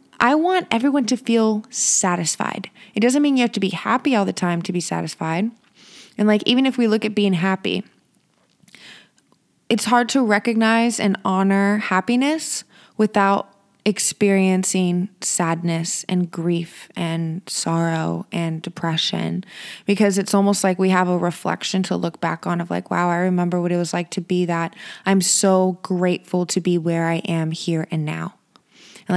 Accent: American